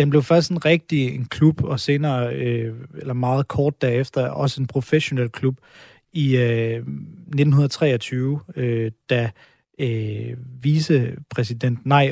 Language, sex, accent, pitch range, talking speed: Danish, male, native, 125-145 Hz, 130 wpm